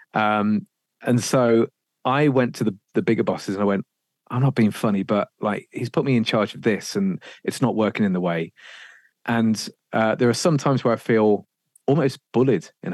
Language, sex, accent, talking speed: English, male, British, 210 wpm